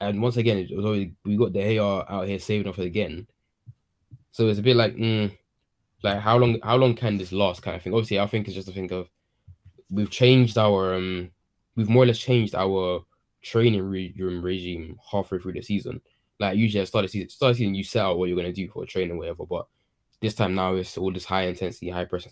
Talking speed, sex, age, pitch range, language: 255 wpm, male, 10-29, 90-110 Hz, English